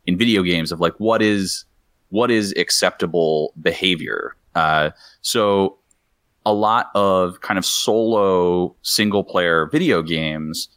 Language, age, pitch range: English, 30-49, 85-105 Hz